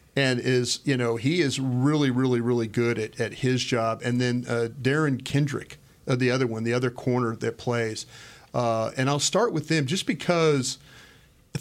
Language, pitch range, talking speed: English, 120-145 Hz, 190 wpm